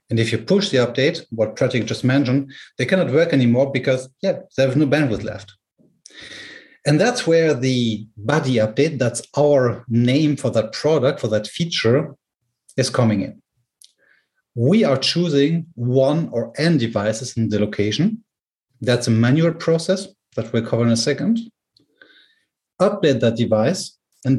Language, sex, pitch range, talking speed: English, male, 115-155 Hz, 155 wpm